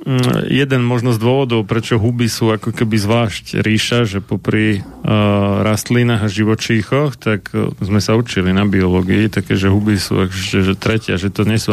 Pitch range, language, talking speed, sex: 105-115 Hz, Slovak, 160 wpm, male